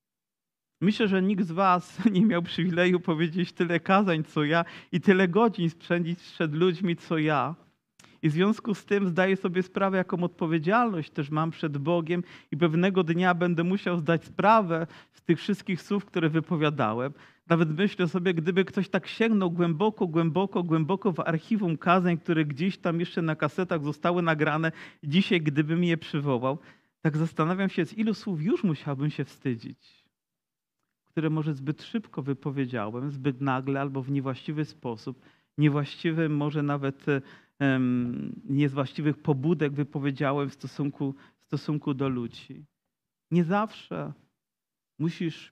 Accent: native